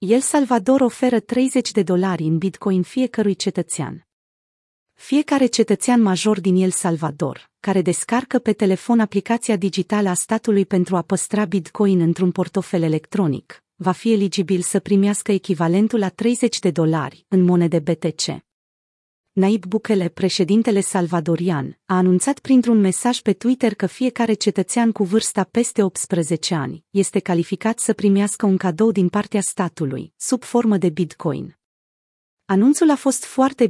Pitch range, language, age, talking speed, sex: 180-225 Hz, Romanian, 30-49, 140 wpm, female